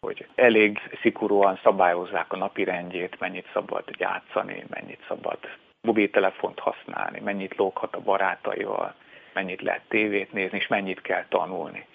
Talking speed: 130 wpm